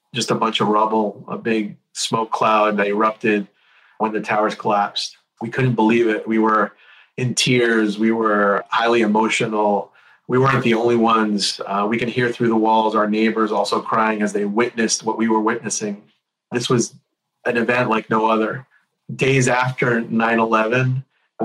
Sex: male